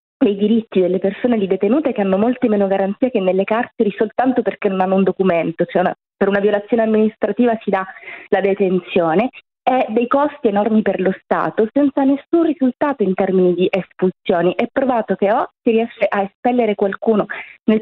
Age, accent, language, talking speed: 20-39, native, Italian, 180 wpm